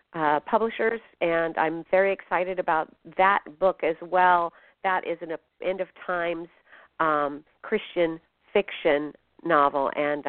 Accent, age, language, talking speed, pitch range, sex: American, 50-69, English, 130 wpm, 170-205 Hz, female